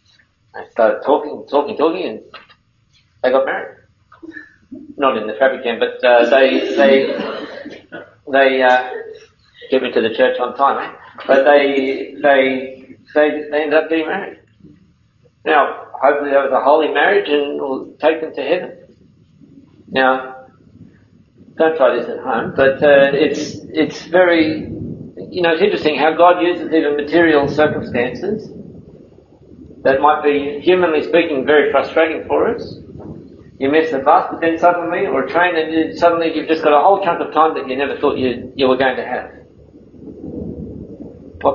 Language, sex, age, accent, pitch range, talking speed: English, male, 50-69, Australian, 135-160 Hz, 160 wpm